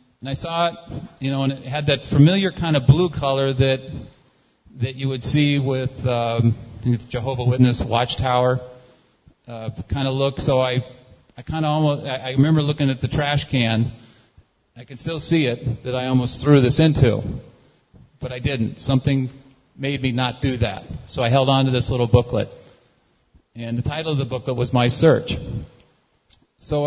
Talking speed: 180 wpm